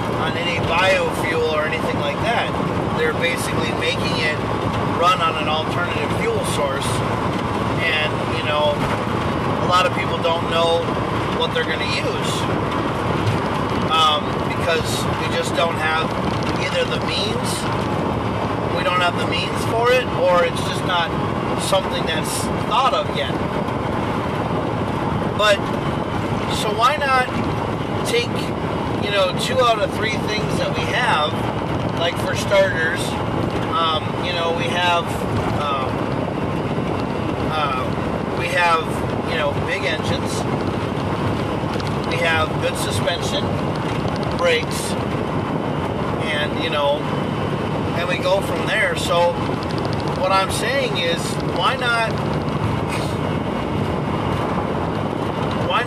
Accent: American